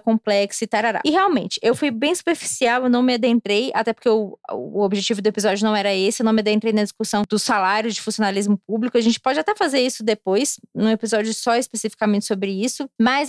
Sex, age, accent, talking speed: female, 20-39, Brazilian, 215 wpm